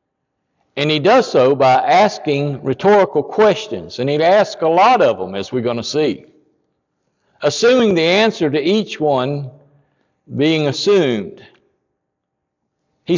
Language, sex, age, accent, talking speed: English, male, 60-79, American, 130 wpm